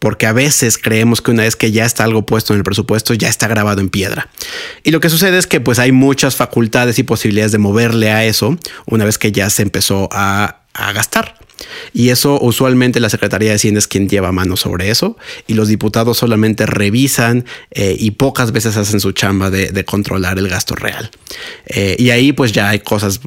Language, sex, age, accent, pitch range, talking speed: Spanish, male, 30-49, Mexican, 105-120 Hz, 215 wpm